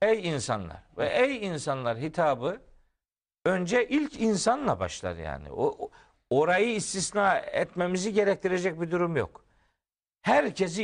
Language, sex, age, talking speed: Turkish, male, 50-69, 110 wpm